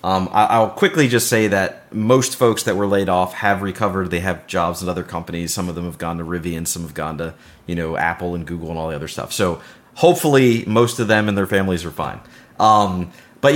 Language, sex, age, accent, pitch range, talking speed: English, male, 30-49, American, 95-115 Hz, 235 wpm